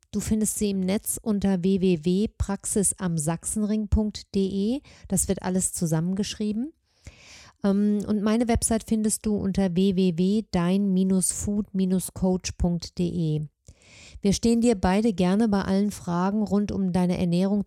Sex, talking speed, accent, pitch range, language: female, 100 wpm, German, 185-215 Hz, German